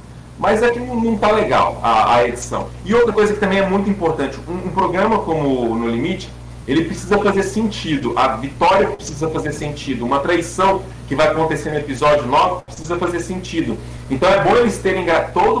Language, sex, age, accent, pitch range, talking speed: Portuguese, male, 40-59, Brazilian, 145-195 Hz, 195 wpm